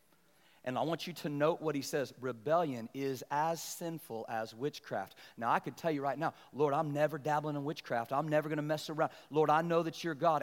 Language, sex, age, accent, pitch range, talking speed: English, male, 40-59, American, 135-165 Hz, 230 wpm